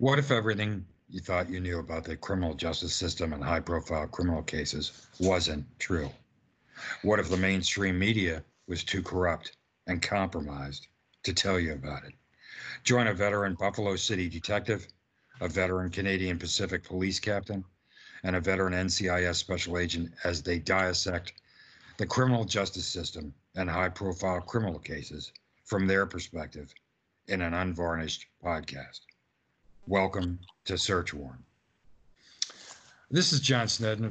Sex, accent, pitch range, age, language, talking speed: male, American, 90-105 Hz, 60-79, English, 140 wpm